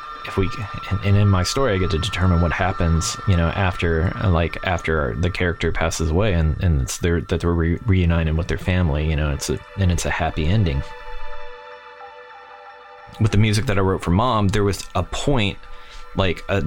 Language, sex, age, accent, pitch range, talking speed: English, male, 20-39, American, 85-100 Hz, 200 wpm